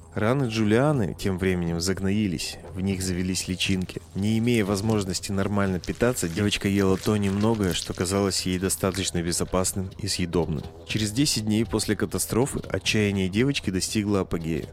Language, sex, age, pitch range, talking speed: Russian, male, 30-49, 95-110 Hz, 140 wpm